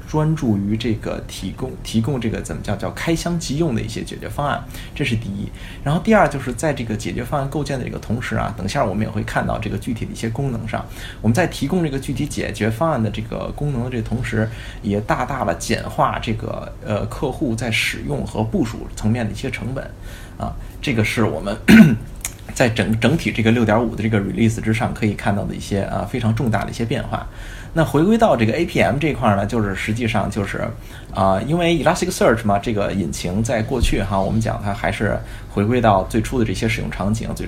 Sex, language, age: male, Chinese, 20-39